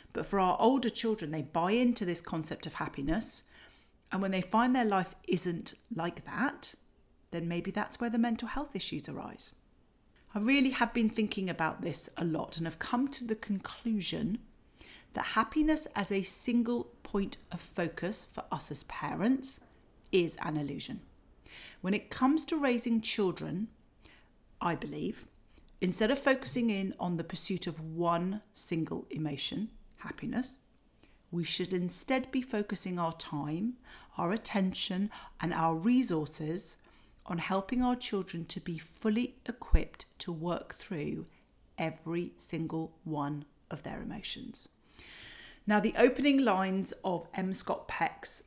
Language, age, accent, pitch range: English, 40-59, British, 165-230 Hz